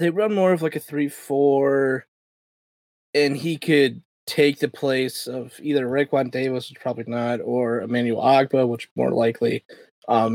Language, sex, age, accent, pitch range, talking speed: English, male, 20-39, American, 125-165 Hz, 160 wpm